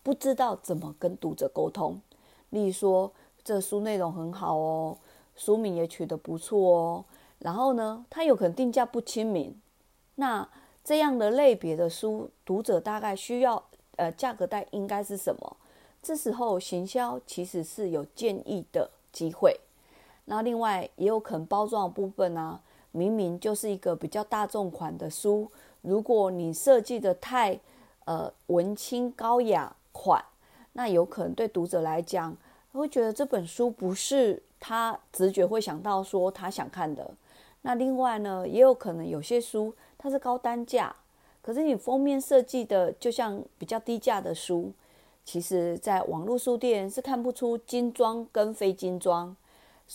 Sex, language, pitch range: female, Chinese, 180-245 Hz